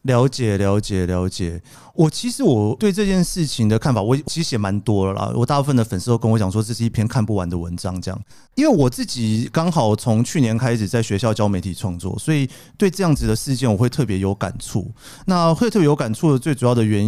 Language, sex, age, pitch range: Chinese, male, 30-49, 105-150 Hz